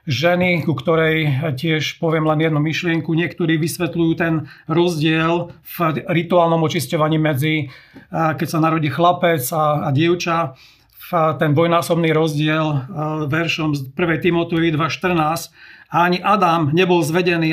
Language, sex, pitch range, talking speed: Slovak, male, 155-170 Hz, 120 wpm